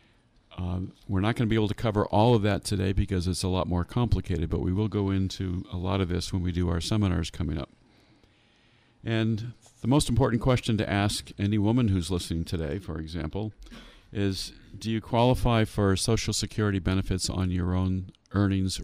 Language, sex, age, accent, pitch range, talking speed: English, male, 50-69, American, 90-105 Hz, 195 wpm